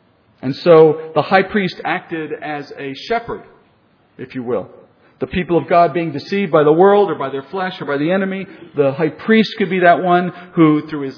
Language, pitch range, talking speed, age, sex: English, 145-190 Hz, 210 wpm, 50-69, male